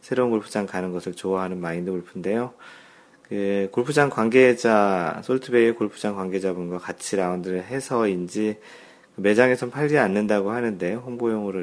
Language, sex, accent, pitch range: Korean, male, native, 95-115 Hz